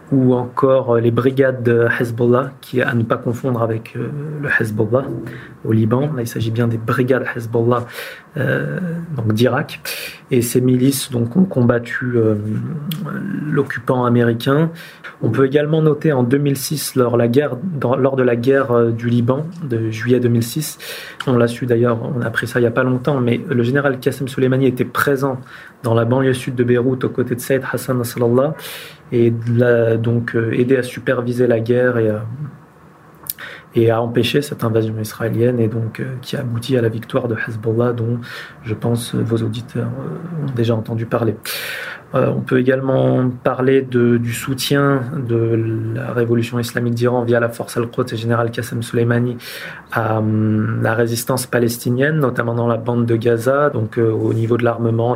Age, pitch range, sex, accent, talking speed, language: 30-49, 115-135 Hz, male, French, 170 wpm, French